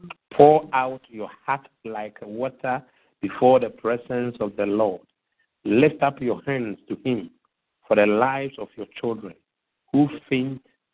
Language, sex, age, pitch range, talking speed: English, male, 50-69, 120-150 Hz, 145 wpm